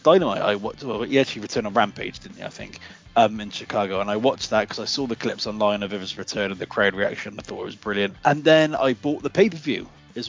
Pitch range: 110-140 Hz